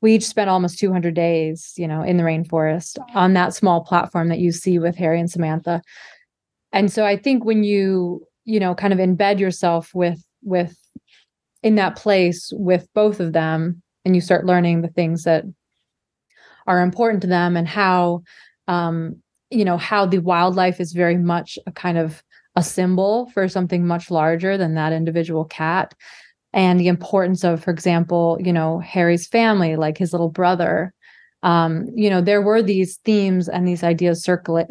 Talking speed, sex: 180 wpm, female